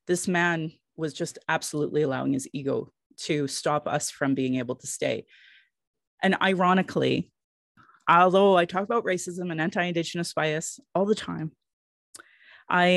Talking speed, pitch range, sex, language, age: 145 wpm, 140-165 Hz, female, English, 30-49